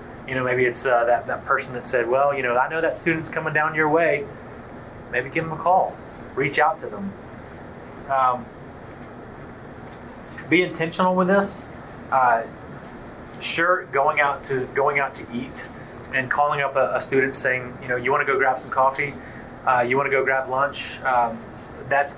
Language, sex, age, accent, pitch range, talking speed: English, male, 30-49, American, 120-145 Hz, 185 wpm